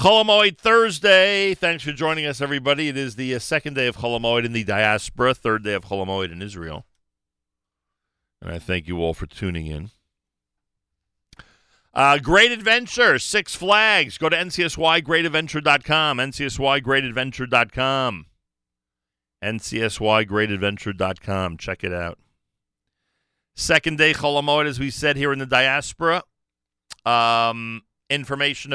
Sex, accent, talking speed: male, American, 120 wpm